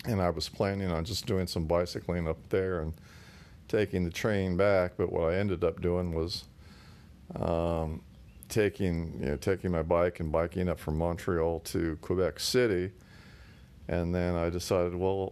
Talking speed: 160 wpm